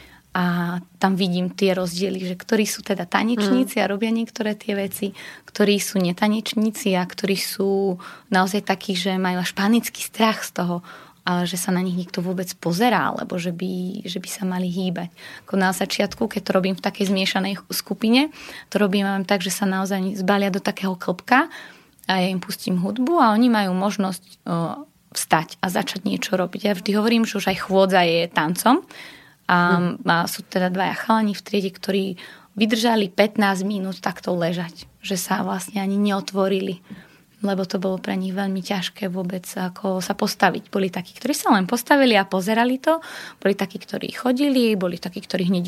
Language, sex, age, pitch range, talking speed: Slovak, female, 20-39, 185-210 Hz, 175 wpm